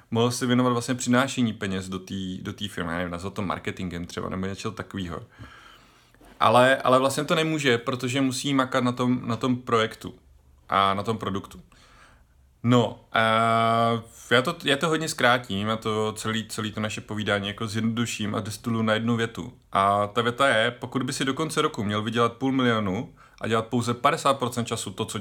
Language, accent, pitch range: Czech, native, 100-120 Hz